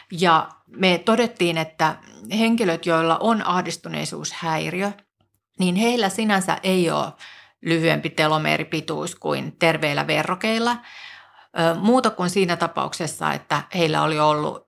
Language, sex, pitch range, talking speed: Finnish, female, 165-205 Hz, 105 wpm